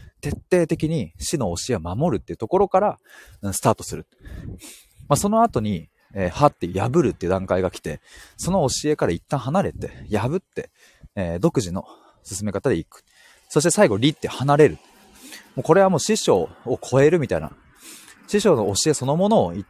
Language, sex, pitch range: Japanese, male, 100-150 Hz